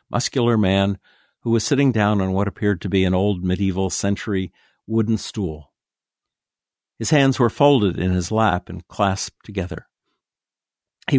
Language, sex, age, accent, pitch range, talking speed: English, male, 60-79, American, 95-120 Hz, 150 wpm